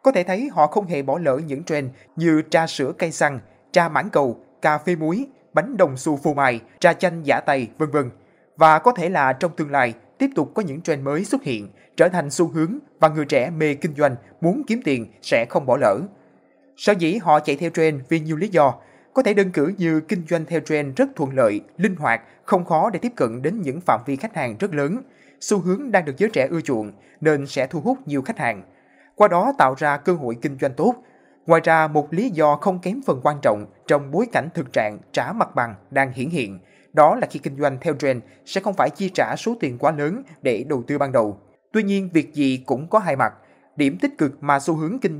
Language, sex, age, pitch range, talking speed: Vietnamese, male, 20-39, 140-190 Hz, 240 wpm